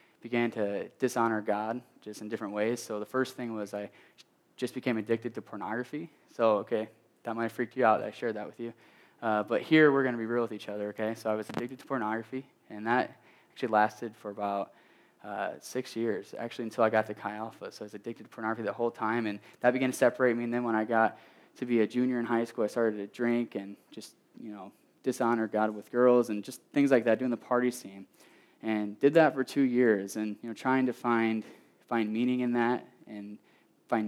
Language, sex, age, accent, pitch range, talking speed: English, male, 10-29, American, 110-125 Hz, 235 wpm